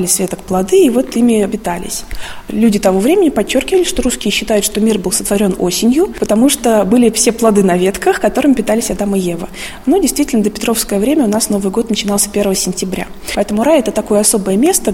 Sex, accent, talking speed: female, native, 195 wpm